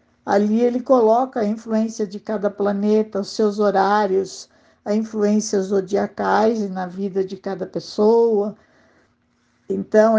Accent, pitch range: Brazilian, 210-265 Hz